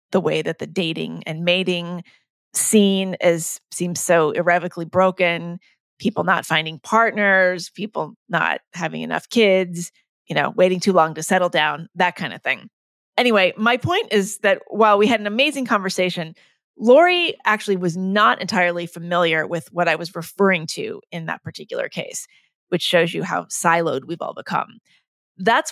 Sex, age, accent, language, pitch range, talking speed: female, 30-49, American, English, 170-210 Hz, 165 wpm